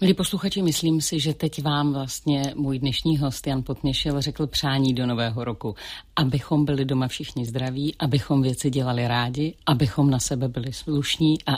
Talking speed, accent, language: 170 wpm, native, Czech